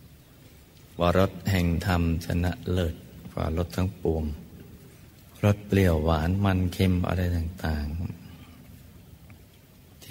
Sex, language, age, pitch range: male, Thai, 60-79, 80-95 Hz